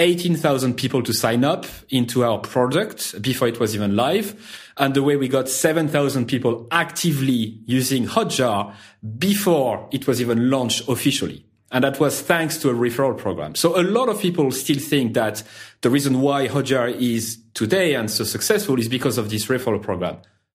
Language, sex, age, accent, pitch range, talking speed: English, male, 30-49, French, 110-140 Hz, 175 wpm